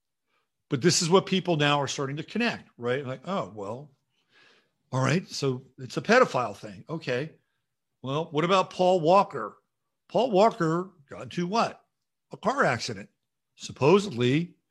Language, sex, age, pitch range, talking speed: English, male, 50-69, 125-160 Hz, 145 wpm